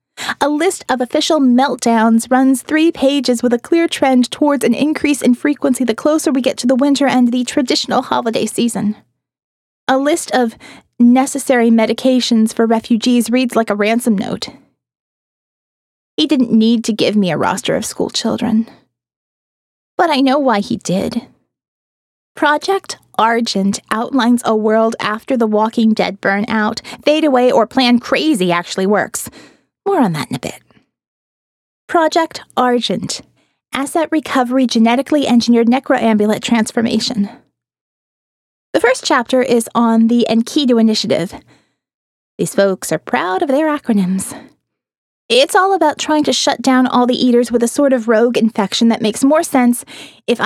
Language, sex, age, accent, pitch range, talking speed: English, female, 20-39, American, 225-275 Hz, 150 wpm